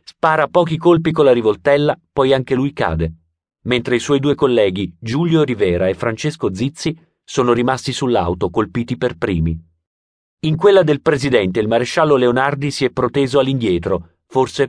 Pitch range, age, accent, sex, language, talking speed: 90-145 Hz, 40-59, native, male, Italian, 155 wpm